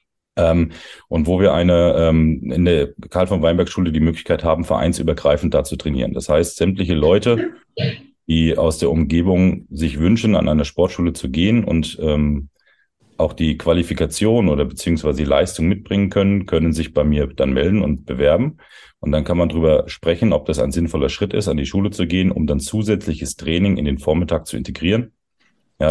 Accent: German